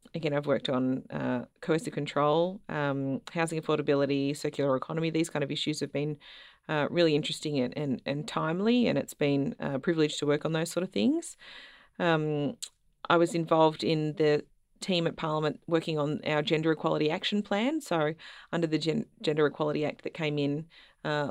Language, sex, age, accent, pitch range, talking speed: English, female, 30-49, Australian, 145-165 Hz, 180 wpm